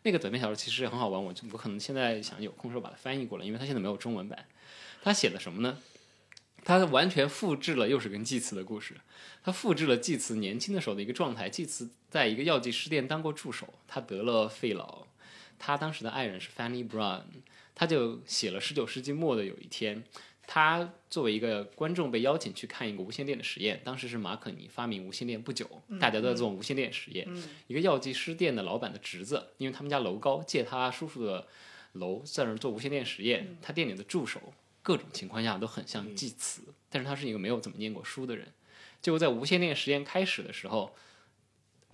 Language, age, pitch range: Chinese, 20-39, 115-155 Hz